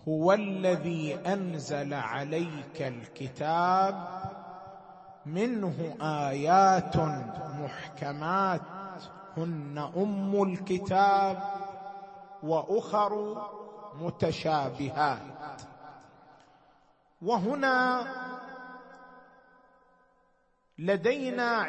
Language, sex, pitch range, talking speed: Arabic, male, 170-215 Hz, 40 wpm